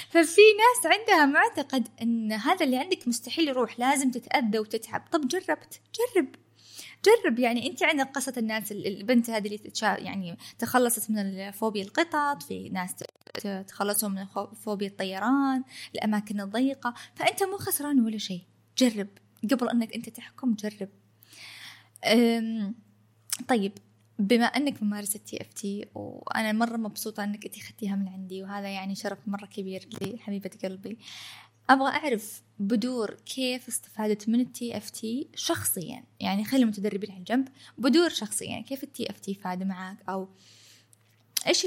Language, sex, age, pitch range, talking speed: Arabic, female, 20-39, 200-255 Hz, 140 wpm